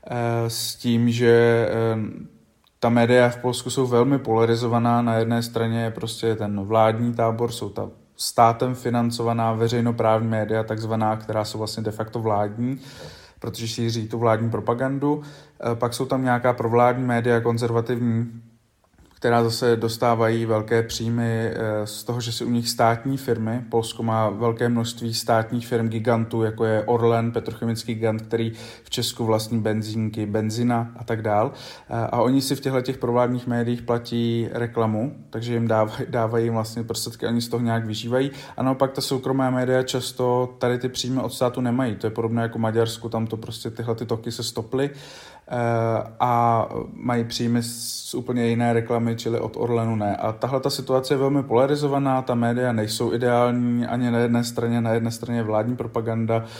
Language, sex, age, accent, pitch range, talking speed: Czech, male, 20-39, native, 115-120 Hz, 165 wpm